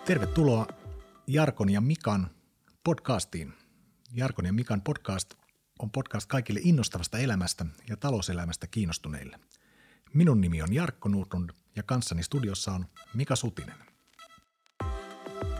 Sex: male